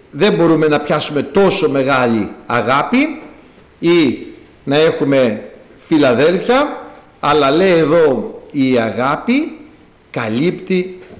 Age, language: 50-69, Greek